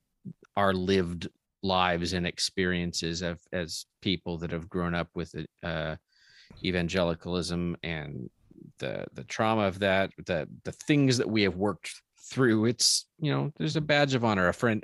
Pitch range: 90-115 Hz